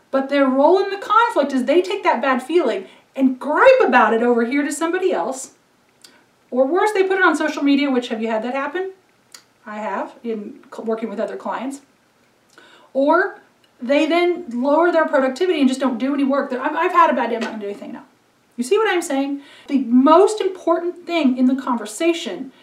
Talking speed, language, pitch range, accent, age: 205 wpm, English, 250-330 Hz, American, 30-49